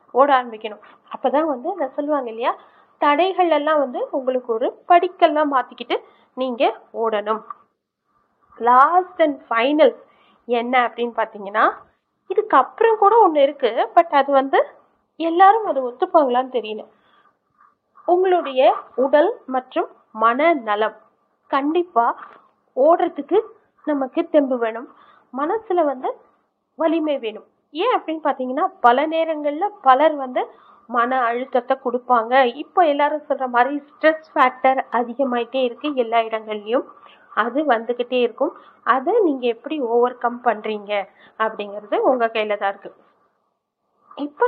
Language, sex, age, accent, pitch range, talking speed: Tamil, female, 30-49, native, 240-330 Hz, 100 wpm